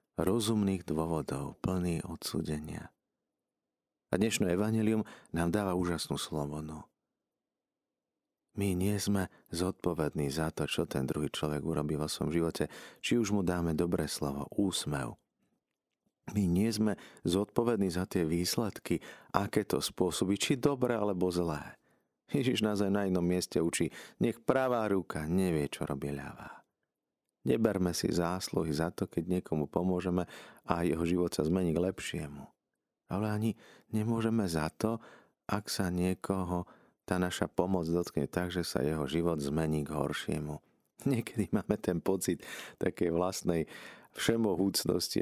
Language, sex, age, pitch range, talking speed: Slovak, male, 40-59, 80-100 Hz, 135 wpm